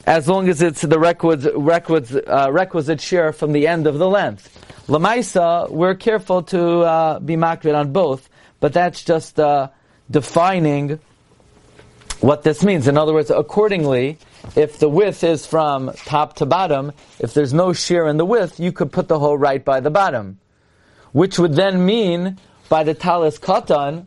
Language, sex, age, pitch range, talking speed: English, male, 40-59, 135-170 Hz, 170 wpm